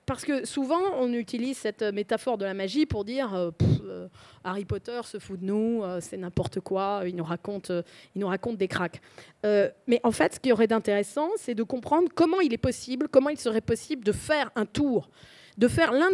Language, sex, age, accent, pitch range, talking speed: French, female, 20-39, French, 205-270 Hz, 225 wpm